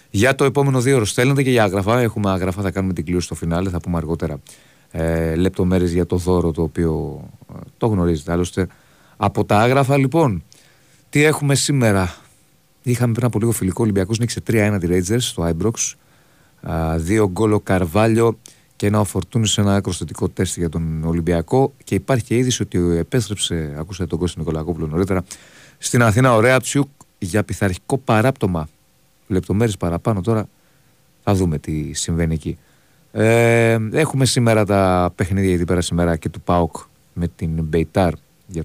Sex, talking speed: male, 160 wpm